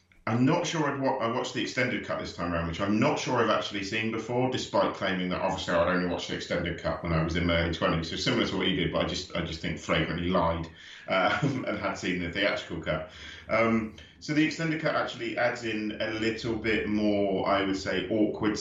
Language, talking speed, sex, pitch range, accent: English, 240 wpm, male, 90-110 Hz, British